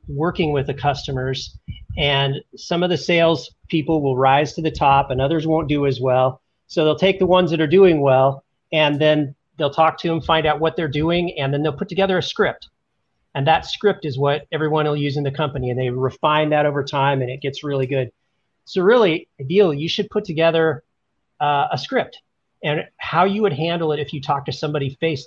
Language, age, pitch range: English, 40-59, 135-165 Hz